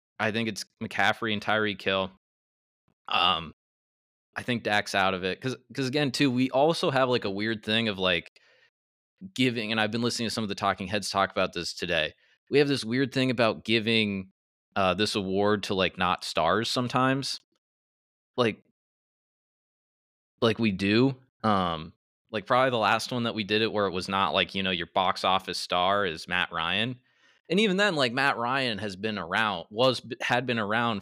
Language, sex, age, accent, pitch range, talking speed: English, male, 20-39, American, 95-125 Hz, 190 wpm